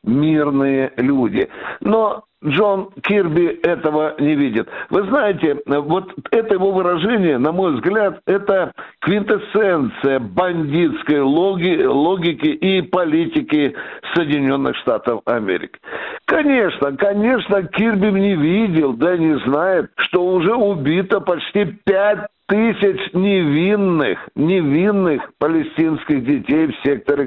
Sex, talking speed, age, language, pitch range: male, 100 wpm, 60-79, Russian, 145-200 Hz